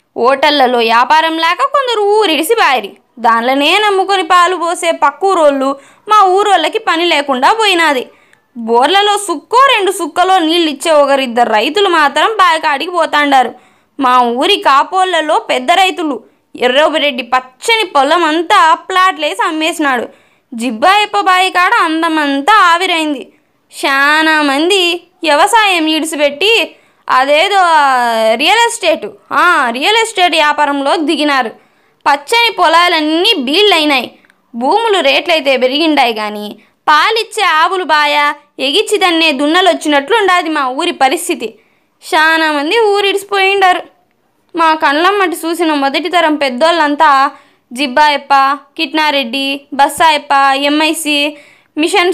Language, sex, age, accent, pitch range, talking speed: Telugu, female, 20-39, native, 280-360 Hz, 95 wpm